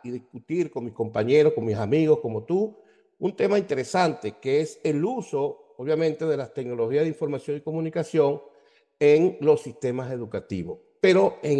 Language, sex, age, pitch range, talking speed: Spanish, male, 50-69, 140-190 Hz, 160 wpm